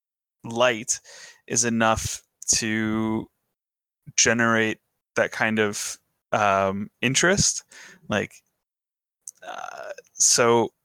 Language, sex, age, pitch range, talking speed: English, male, 20-39, 110-125 Hz, 70 wpm